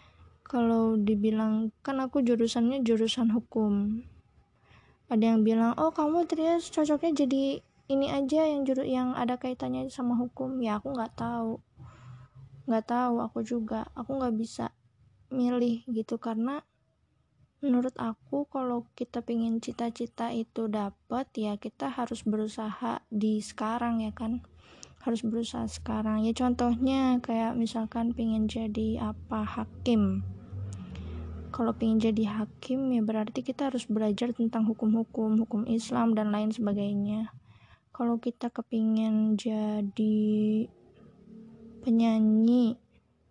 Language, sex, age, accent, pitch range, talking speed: Indonesian, female, 20-39, native, 215-245 Hz, 120 wpm